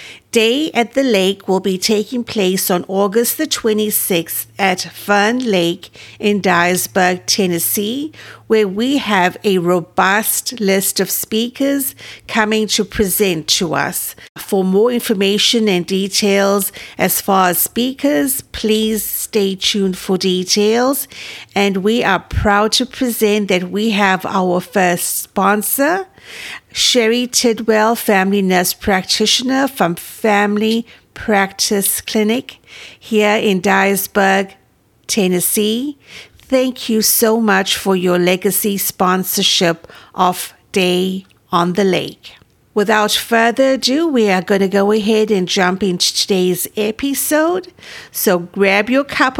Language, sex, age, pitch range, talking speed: English, female, 50-69, 190-230 Hz, 125 wpm